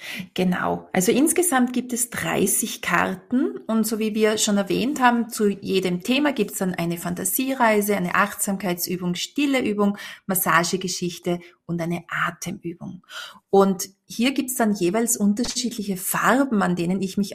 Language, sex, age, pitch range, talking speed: German, female, 30-49, 190-240 Hz, 145 wpm